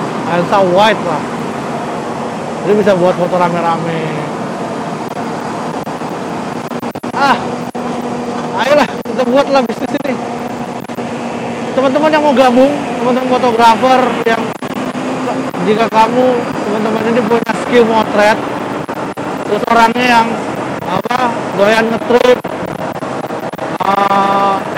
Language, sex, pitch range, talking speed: Indonesian, male, 200-245 Hz, 80 wpm